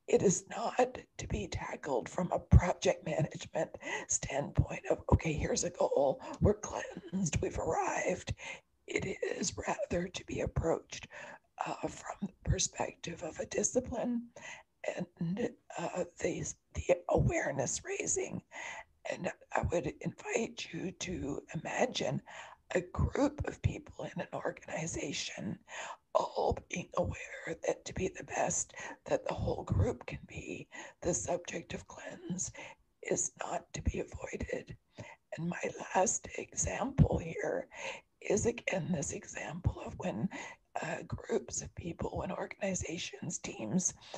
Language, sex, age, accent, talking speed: English, female, 60-79, American, 130 wpm